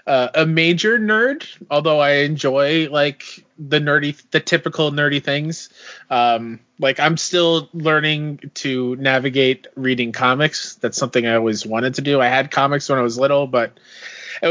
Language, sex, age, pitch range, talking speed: English, male, 20-39, 120-155 Hz, 160 wpm